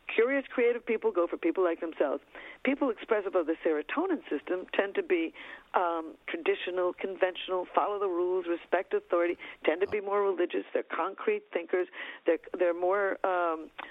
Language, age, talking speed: English, 50-69, 160 wpm